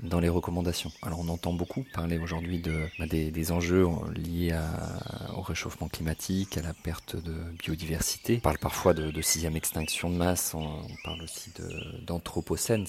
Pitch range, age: 80-95 Hz, 40-59